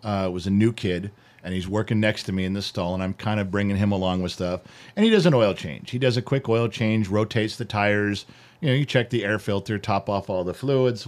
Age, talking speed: 40-59, 270 wpm